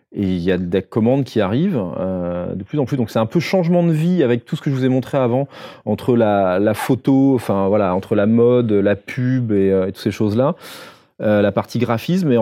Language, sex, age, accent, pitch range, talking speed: French, male, 30-49, French, 105-135 Hz, 245 wpm